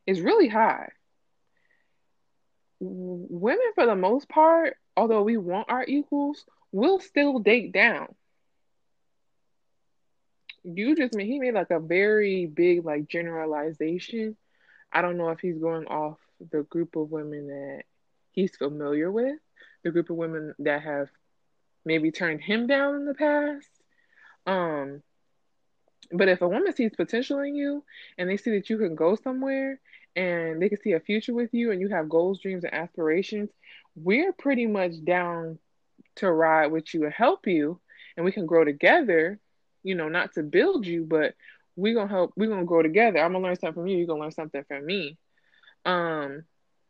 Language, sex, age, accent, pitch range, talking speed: English, female, 20-39, American, 165-235 Hz, 170 wpm